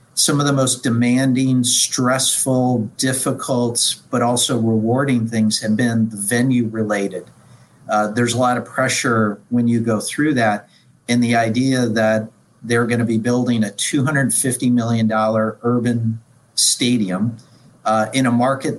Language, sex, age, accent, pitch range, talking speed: English, male, 50-69, American, 115-130 Hz, 140 wpm